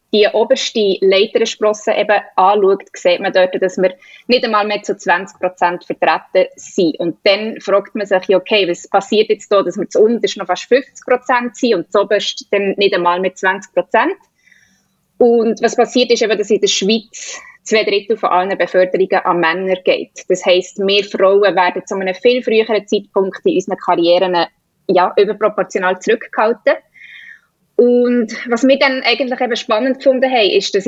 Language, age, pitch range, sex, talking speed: German, 20-39, 185-230 Hz, female, 165 wpm